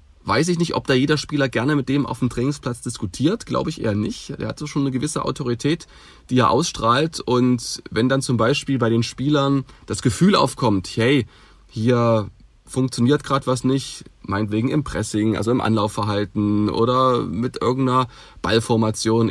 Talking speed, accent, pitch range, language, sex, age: 170 wpm, German, 110-140 Hz, German, male, 30-49